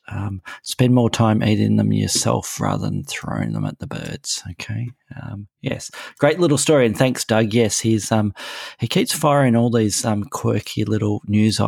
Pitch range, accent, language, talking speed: 105-130 Hz, Australian, English, 180 wpm